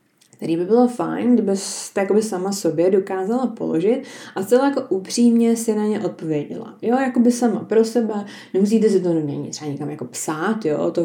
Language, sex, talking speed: Czech, female, 180 wpm